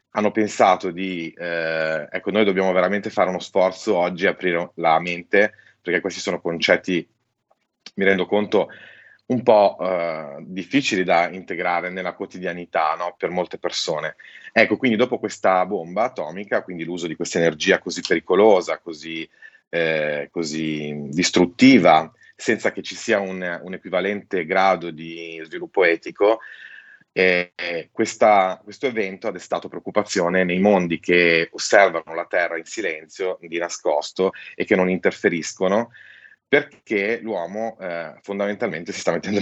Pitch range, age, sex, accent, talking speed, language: 85-100 Hz, 30-49, male, native, 135 wpm, Italian